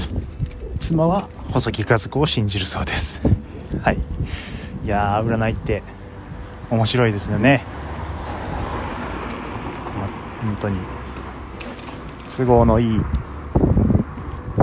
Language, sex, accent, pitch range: Japanese, male, native, 95-115 Hz